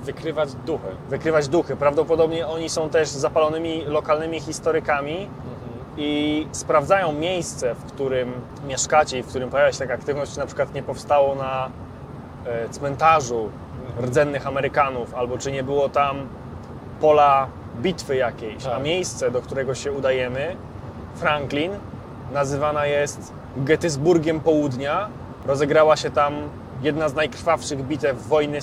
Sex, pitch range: male, 130-155 Hz